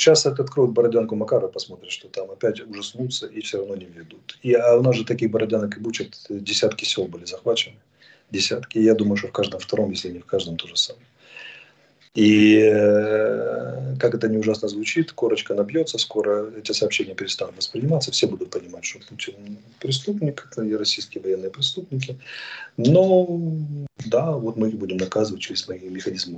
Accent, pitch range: native, 105-150 Hz